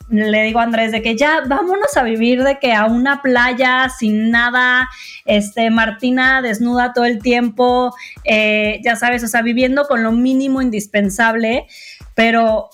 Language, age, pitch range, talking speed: Spanish, 20-39, 215-260 Hz, 155 wpm